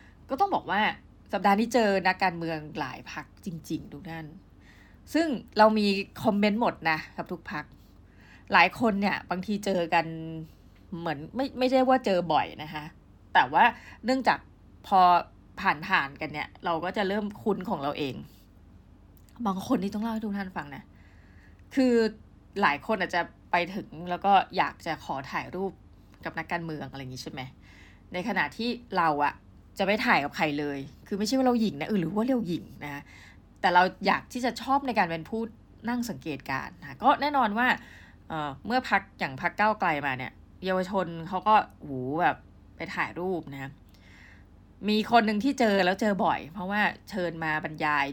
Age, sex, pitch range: 20-39, female, 145-205 Hz